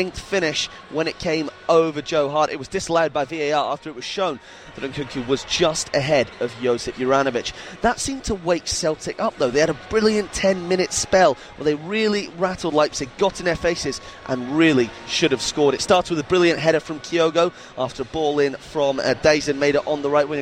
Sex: male